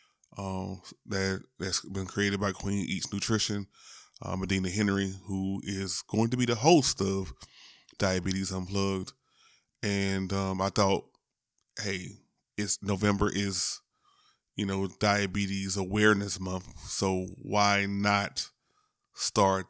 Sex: male